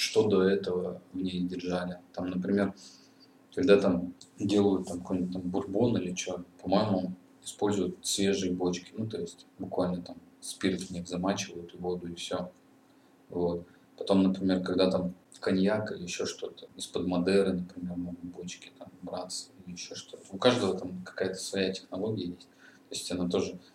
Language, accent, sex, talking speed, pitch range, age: Russian, native, male, 160 wpm, 90-95 Hz, 20-39